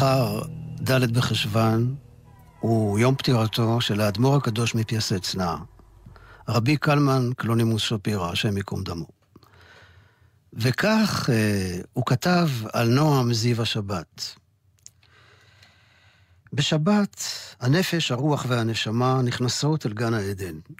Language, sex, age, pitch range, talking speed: Hebrew, male, 50-69, 110-135 Hz, 95 wpm